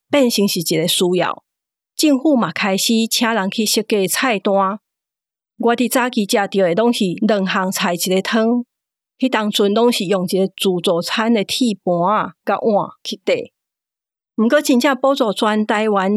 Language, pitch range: Chinese, 195-235 Hz